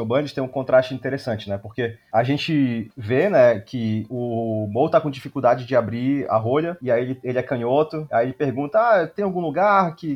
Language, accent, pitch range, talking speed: Portuguese, Brazilian, 120-150 Hz, 205 wpm